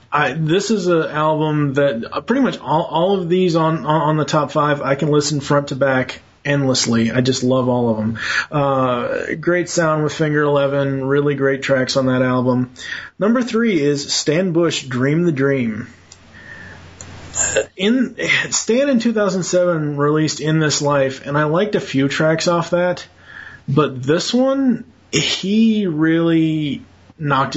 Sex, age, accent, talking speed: male, 30-49, American, 155 wpm